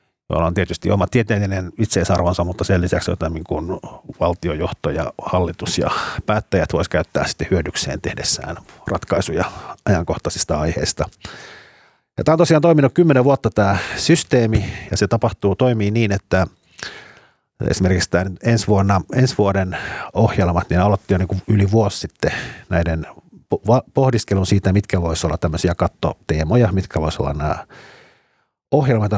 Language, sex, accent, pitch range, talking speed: Finnish, male, native, 85-110 Hz, 130 wpm